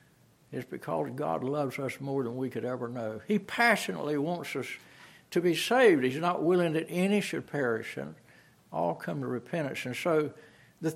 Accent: American